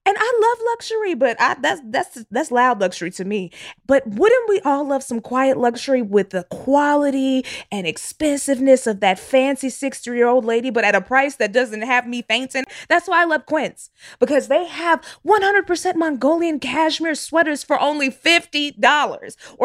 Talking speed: 170 wpm